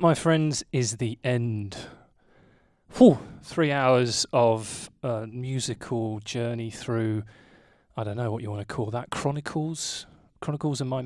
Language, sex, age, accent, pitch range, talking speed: English, male, 30-49, British, 110-130 Hz, 140 wpm